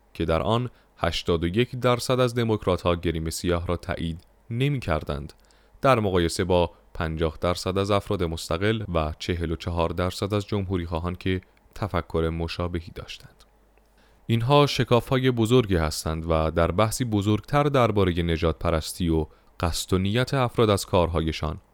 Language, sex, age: Persian, male, 30-49